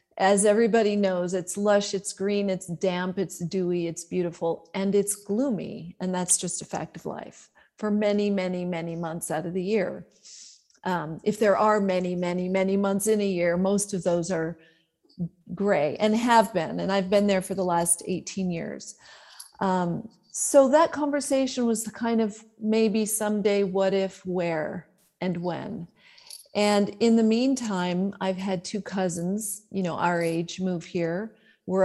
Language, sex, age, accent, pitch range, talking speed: English, female, 40-59, American, 180-210 Hz, 170 wpm